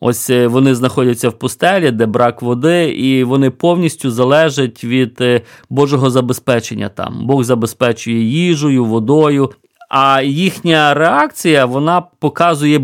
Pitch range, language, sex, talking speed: 120-150 Hz, Ukrainian, male, 115 wpm